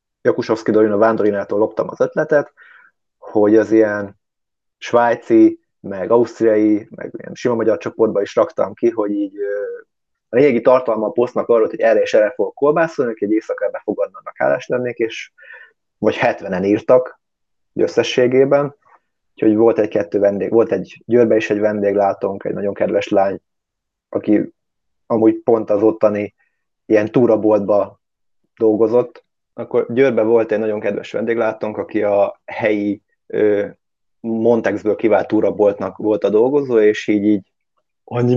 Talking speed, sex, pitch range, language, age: 140 wpm, male, 105-120 Hz, Hungarian, 30-49